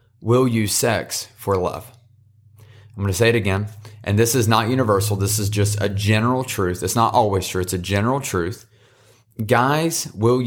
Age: 30-49